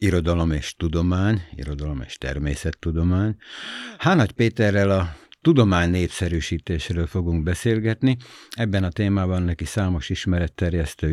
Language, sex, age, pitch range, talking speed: Hungarian, male, 60-79, 85-105 Hz, 100 wpm